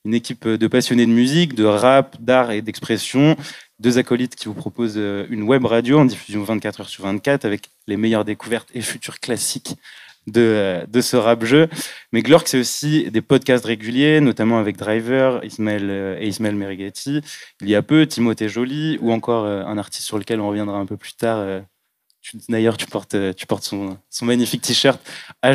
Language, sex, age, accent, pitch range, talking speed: French, male, 20-39, French, 100-120 Hz, 180 wpm